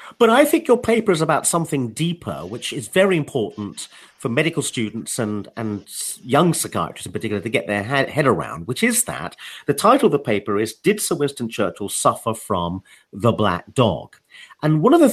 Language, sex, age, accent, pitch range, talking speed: English, male, 40-59, British, 115-185 Hz, 200 wpm